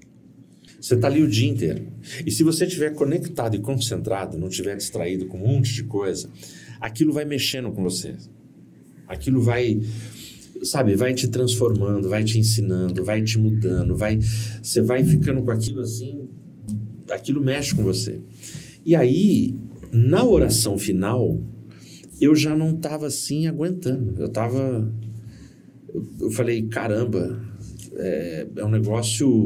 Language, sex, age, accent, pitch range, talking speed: Portuguese, male, 50-69, Brazilian, 110-135 Hz, 140 wpm